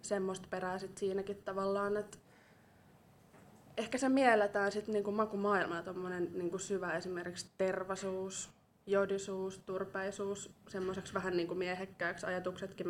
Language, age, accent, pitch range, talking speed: Finnish, 20-39, native, 185-205 Hz, 105 wpm